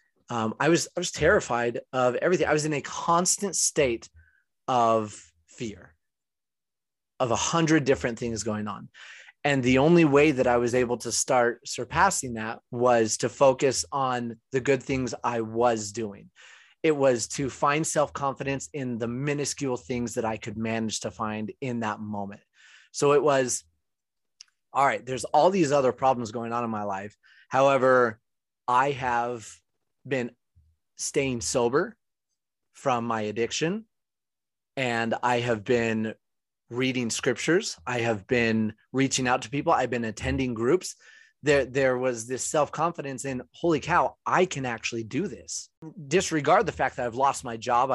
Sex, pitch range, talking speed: male, 115-140 Hz, 155 wpm